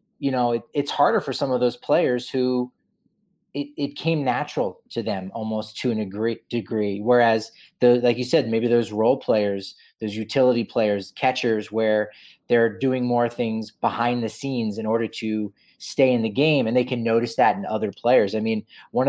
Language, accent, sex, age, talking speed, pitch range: English, American, male, 30-49, 190 wpm, 110-130 Hz